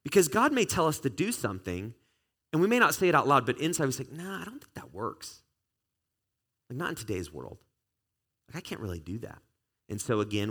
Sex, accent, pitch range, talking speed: male, American, 95-130 Hz, 230 wpm